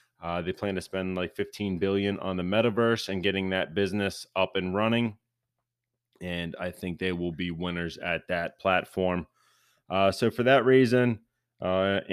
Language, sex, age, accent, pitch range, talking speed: English, male, 20-39, American, 90-110 Hz, 170 wpm